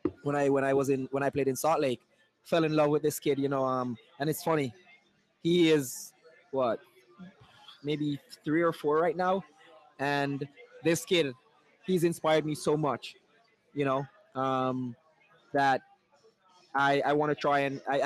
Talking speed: 175 wpm